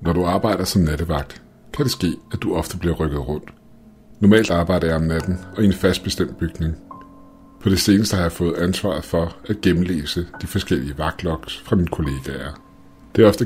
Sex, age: male, 60-79